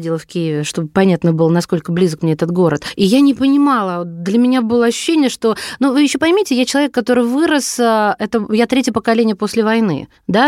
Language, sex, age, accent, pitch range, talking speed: Russian, female, 20-39, native, 190-250 Hz, 195 wpm